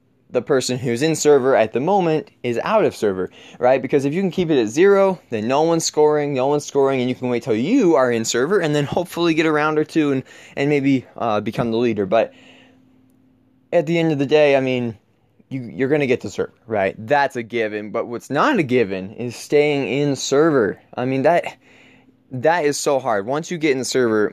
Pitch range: 115-145 Hz